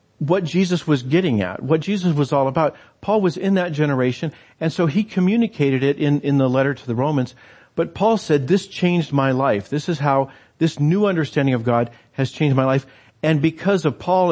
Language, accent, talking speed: English, American, 210 wpm